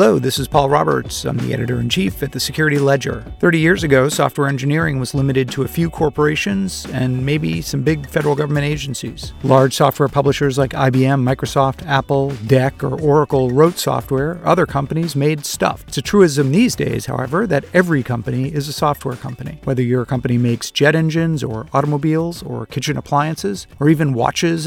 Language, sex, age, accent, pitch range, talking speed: English, male, 40-59, American, 130-155 Hz, 180 wpm